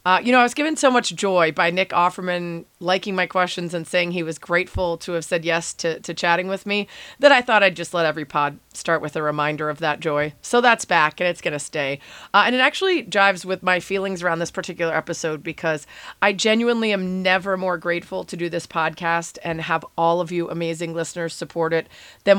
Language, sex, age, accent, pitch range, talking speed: English, female, 30-49, American, 160-190 Hz, 225 wpm